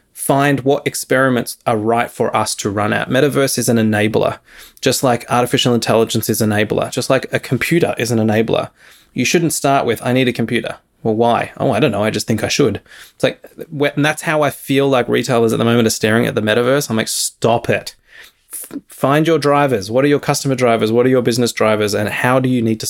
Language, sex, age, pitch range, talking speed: English, male, 20-39, 110-140 Hz, 230 wpm